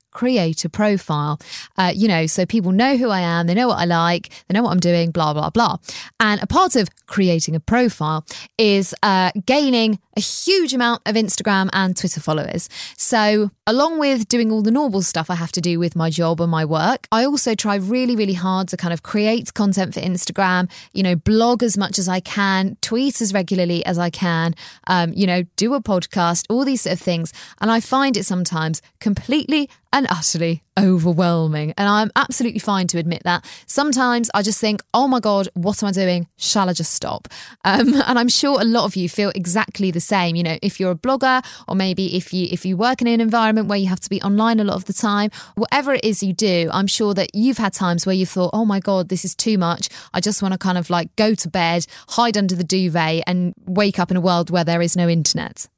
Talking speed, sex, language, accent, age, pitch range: 230 wpm, female, English, British, 20-39, 175-220 Hz